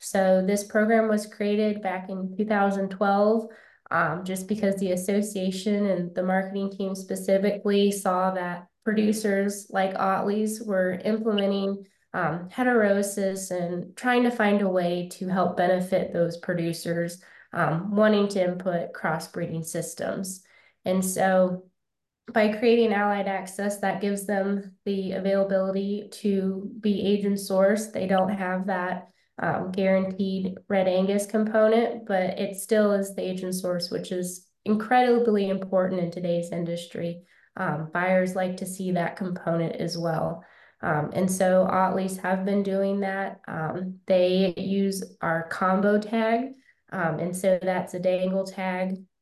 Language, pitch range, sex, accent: English, 180-200 Hz, female, American